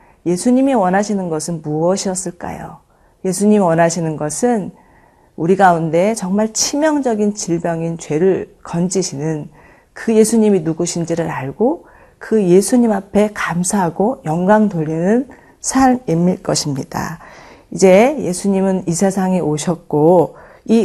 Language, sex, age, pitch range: Korean, female, 40-59, 165-205 Hz